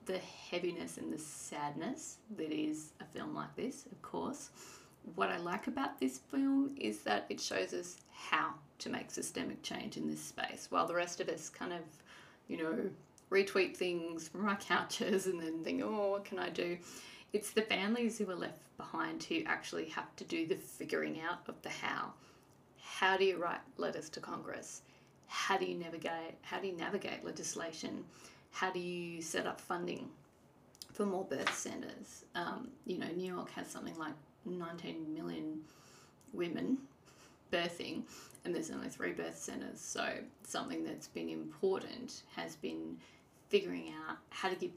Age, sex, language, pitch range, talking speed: 30-49, female, English, 155-195 Hz, 170 wpm